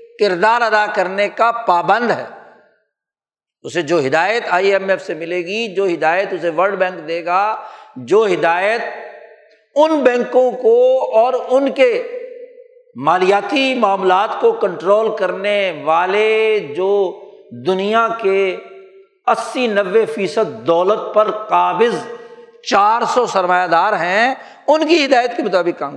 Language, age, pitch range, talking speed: Urdu, 60-79, 175-290 Hz, 130 wpm